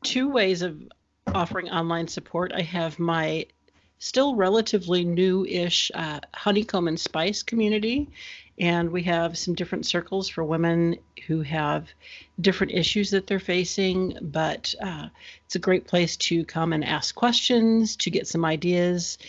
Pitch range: 165-190 Hz